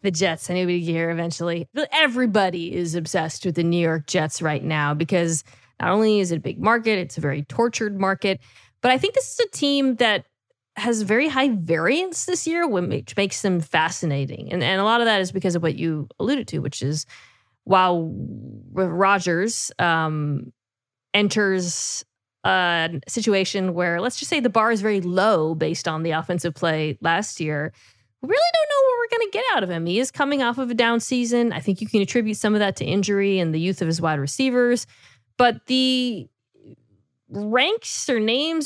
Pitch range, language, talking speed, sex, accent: 160-240 Hz, English, 195 wpm, female, American